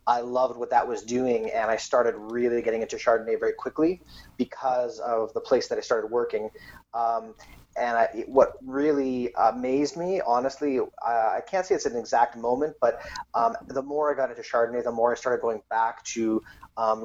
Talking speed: 190 wpm